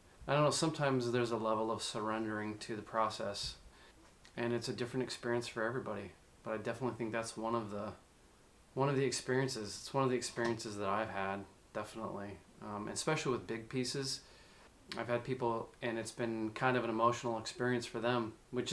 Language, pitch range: English, 110-130 Hz